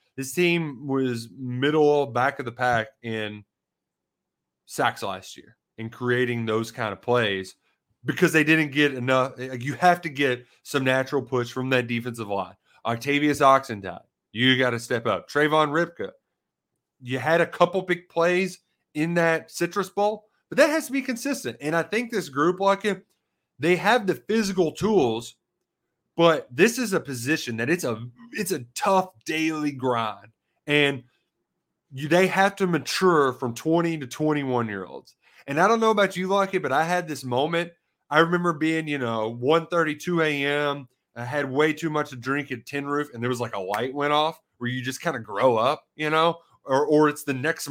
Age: 30-49